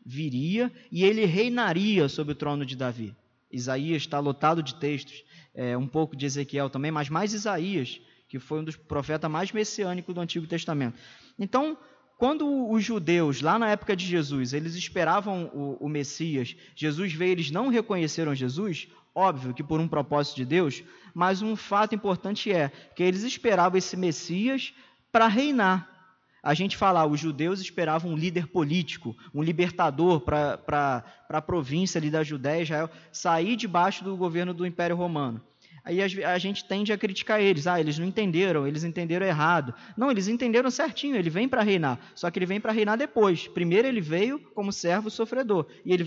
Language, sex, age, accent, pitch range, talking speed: Portuguese, male, 20-39, Brazilian, 150-210 Hz, 175 wpm